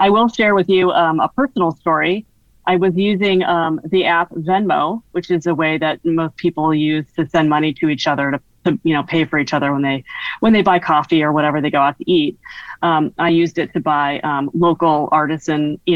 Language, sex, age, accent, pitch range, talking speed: English, female, 30-49, American, 150-180 Hz, 230 wpm